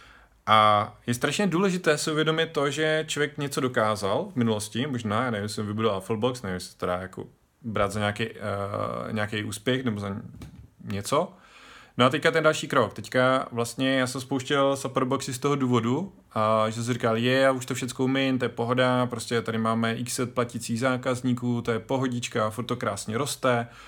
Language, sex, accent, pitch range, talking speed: Czech, male, native, 110-130 Hz, 185 wpm